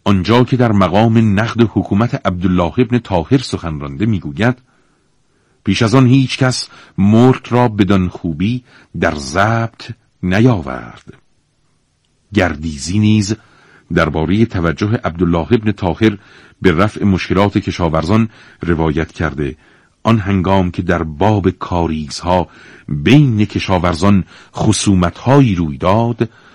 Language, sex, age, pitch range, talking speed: Persian, male, 50-69, 90-120 Hz, 105 wpm